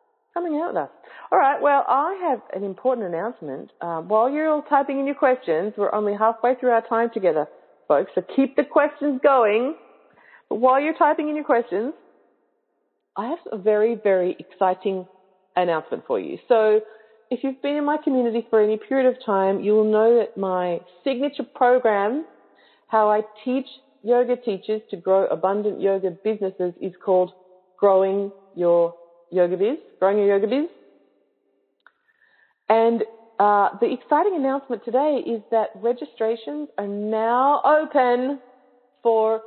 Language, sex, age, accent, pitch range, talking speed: English, female, 40-59, Australian, 200-275 Hz, 150 wpm